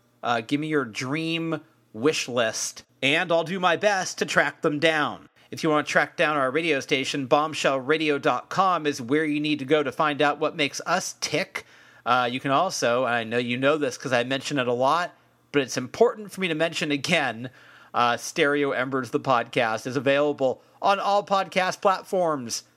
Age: 40-59